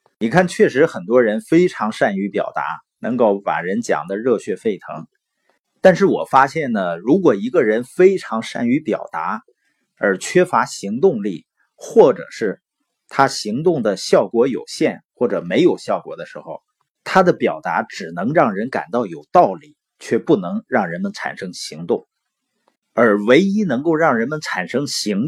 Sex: male